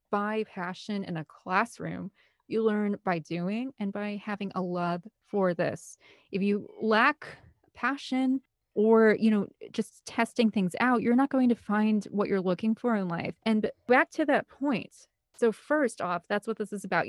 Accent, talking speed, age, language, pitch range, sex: American, 180 wpm, 30-49, English, 180-220 Hz, female